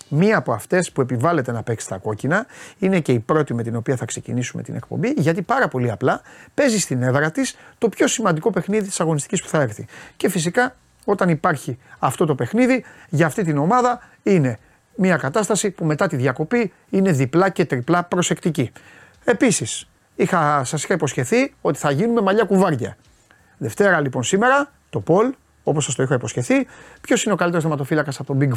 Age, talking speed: 30-49, 185 wpm